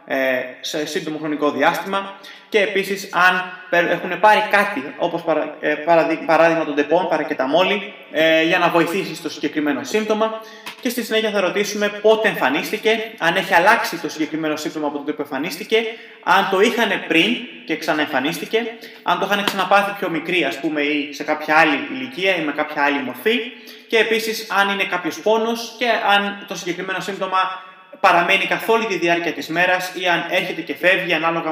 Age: 20-39